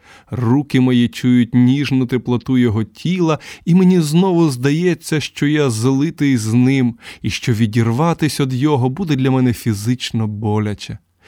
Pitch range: 115-165 Hz